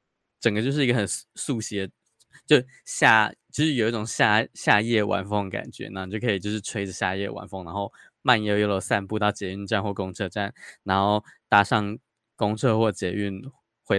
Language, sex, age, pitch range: Chinese, male, 20-39, 100-115 Hz